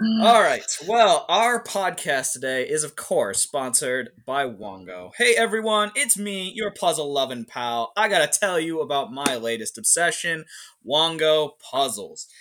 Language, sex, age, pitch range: English, male, 20-39, 130-205 Hz